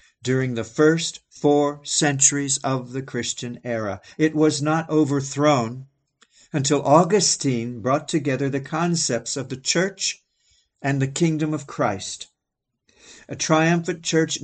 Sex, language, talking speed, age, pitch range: male, English, 125 wpm, 50-69, 120-155 Hz